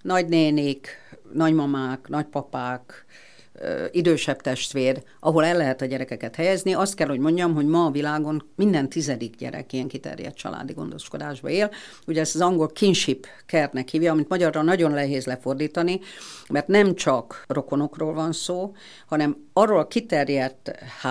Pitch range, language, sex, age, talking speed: 140-175 Hz, Hungarian, female, 50-69, 140 wpm